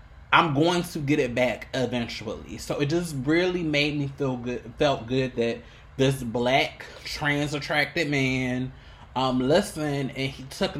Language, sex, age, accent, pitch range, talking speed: English, male, 20-39, American, 135-180 Hz, 155 wpm